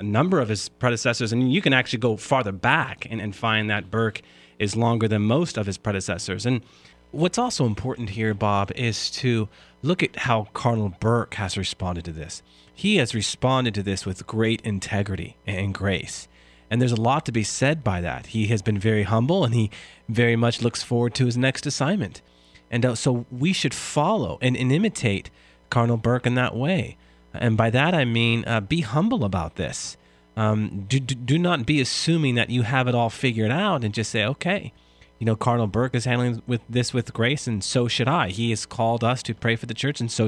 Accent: American